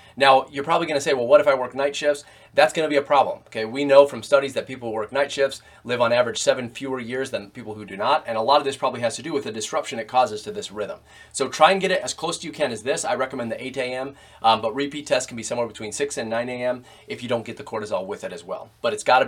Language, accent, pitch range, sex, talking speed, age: English, American, 120-155 Hz, male, 300 wpm, 30-49